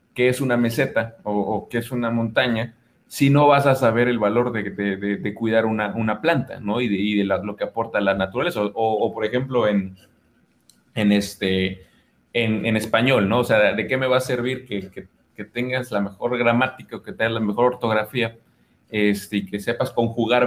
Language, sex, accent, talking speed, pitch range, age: Spanish, male, Mexican, 215 wpm, 105-130 Hz, 30-49